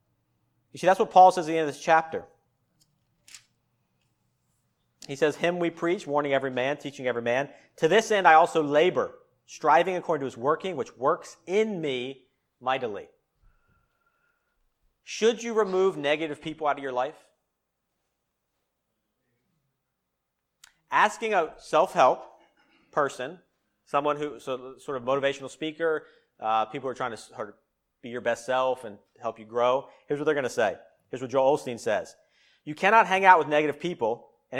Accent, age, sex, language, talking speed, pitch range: American, 40-59, male, English, 165 wpm, 130-175 Hz